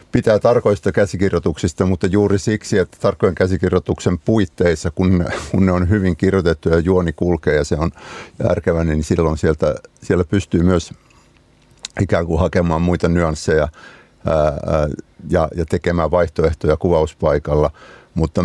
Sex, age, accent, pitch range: male, 60-79, native, 80-90 Hz